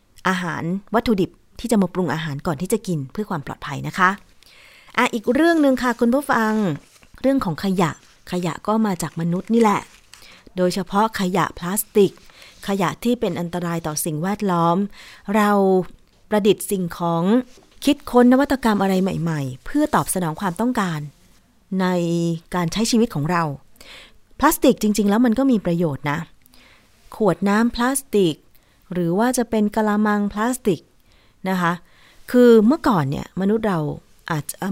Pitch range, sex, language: 170-220 Hz, female, Thai